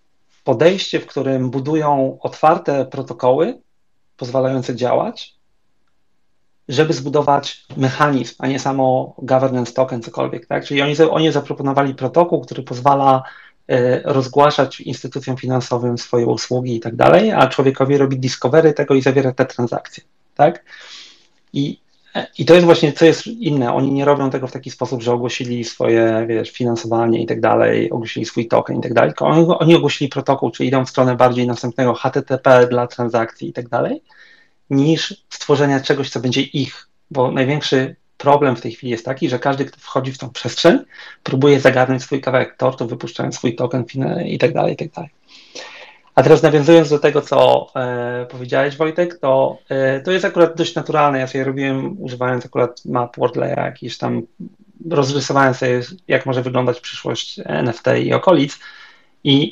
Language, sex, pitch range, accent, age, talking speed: Polish, male, 125-145 Hz, native, 40-59, 160 wpm